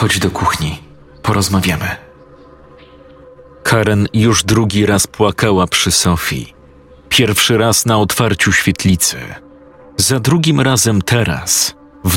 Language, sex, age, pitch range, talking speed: Polish, male, 40-59, 90-115 Hz, 105 wpm